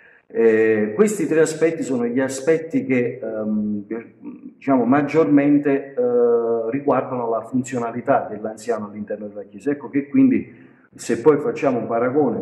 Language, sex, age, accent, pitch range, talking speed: Italian, male, 50-69, native, 115-155 Hz, 125 wpm